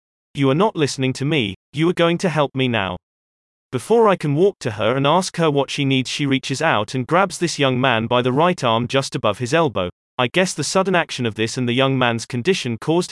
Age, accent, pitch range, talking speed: 30-49, British, 120-160 Hz, 245 wpm